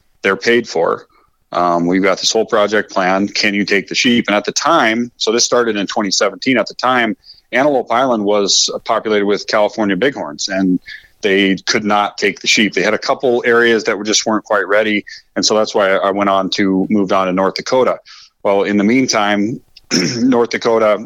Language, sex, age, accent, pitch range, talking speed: English, male, 30-49, American, 95-110 Hz, 200 wpm